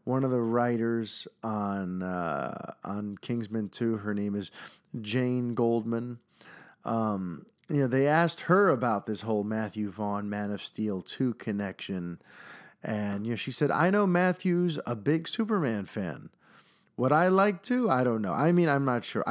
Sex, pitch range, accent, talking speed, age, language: male, 110-165 Hz, American, 170 wpm, 30-49, English